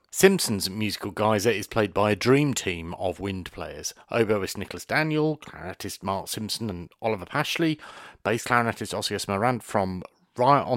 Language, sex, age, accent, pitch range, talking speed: English, male, 40-59, British, 90-115 Hz, 150 wpm